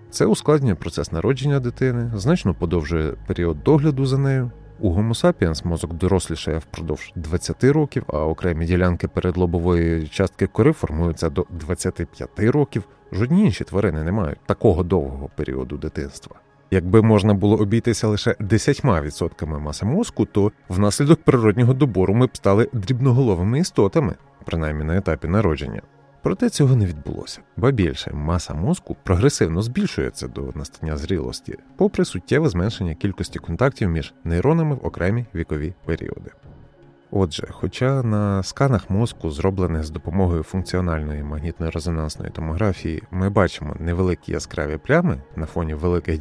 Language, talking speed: Ukrainian, 130 wpm